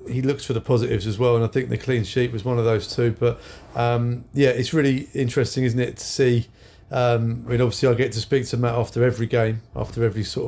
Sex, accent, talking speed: male, British, 250 wpm